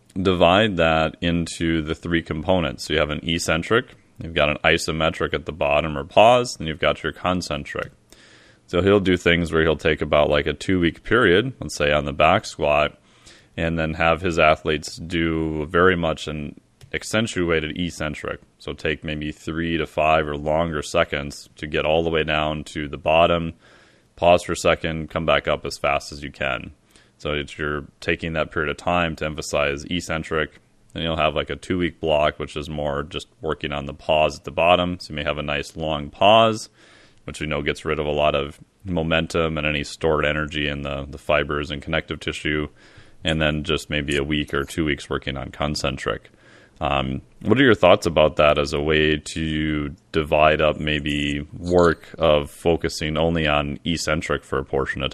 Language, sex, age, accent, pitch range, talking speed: English, male, 30-49, American, 75-85 Hz, 195 wpm